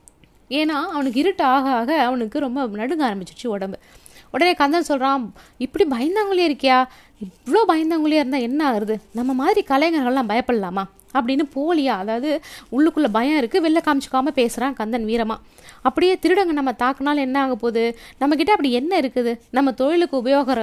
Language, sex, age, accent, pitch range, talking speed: Tamil, female, 20-39, native, 225-280 Hz, 150 wpm